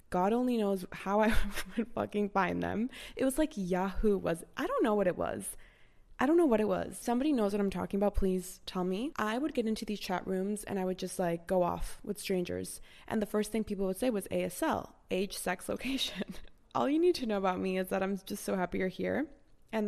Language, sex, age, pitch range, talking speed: English, female, 20-39, 180-205 Hz, 240 wpm